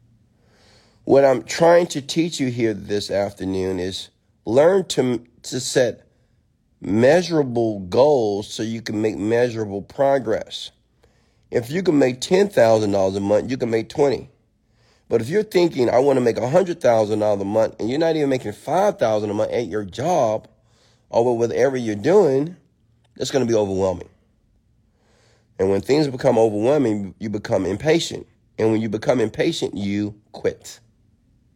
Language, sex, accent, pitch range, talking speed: English, male, American, 110-135 Hz, 150 wpm